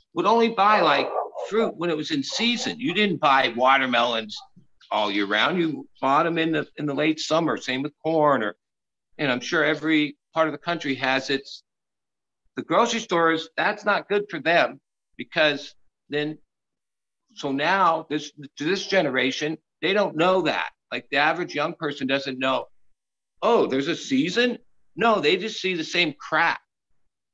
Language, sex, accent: English, male, American